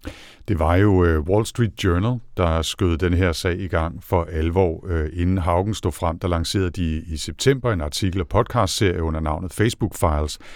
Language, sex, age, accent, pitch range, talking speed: Danish, male, 60-79, native, 80-95 Hz, 180 wpm